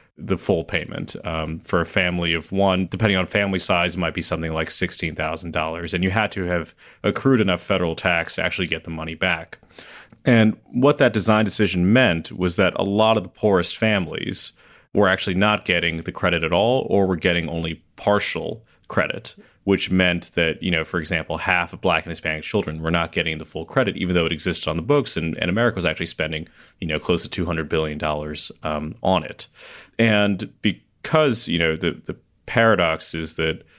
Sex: male